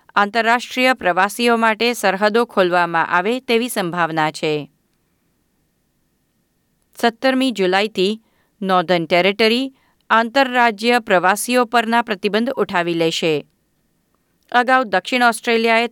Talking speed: 85 wpm